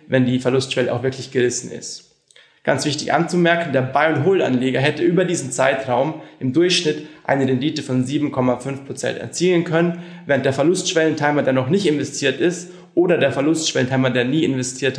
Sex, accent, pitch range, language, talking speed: male, German, 130-160 Hz, German, 160 wpm